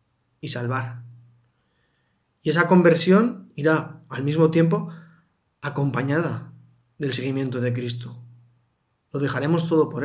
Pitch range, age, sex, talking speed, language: 120-170 Hz, 20-39, male, 110 wpm, Spanish